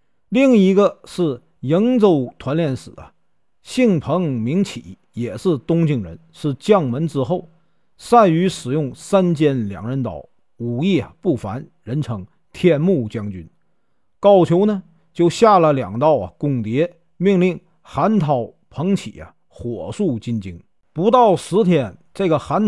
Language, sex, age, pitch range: Chinese, male, 50-69, 130-190 Hz